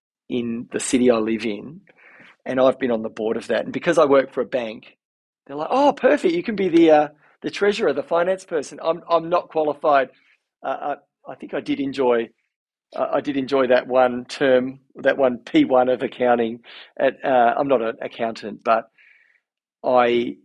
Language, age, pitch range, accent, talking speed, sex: English, 40-59, 110-130 Hz, Australian, 195 wpm, male